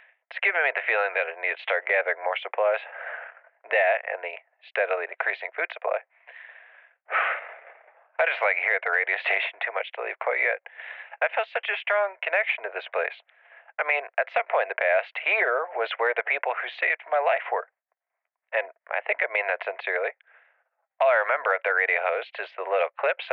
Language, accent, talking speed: English, American, 205 wpm